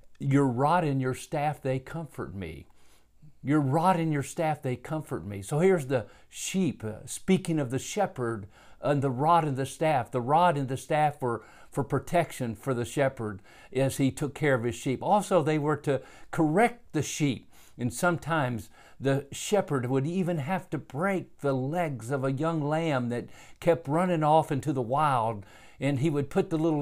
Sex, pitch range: male, 125-155 Hz